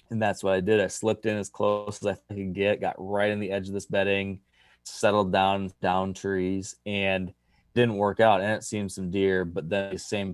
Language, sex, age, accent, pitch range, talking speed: English, male, 20-39, American, 95-110 Hz, 225 wpm